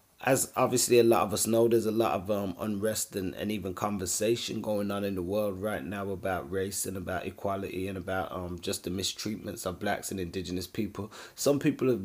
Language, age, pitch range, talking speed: English, 20-39, 95-110 Hz, 215 wpm